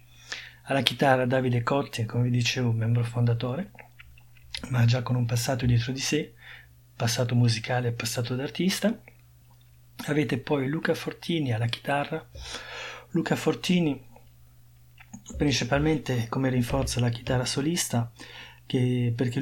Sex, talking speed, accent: male, 115 wpm, native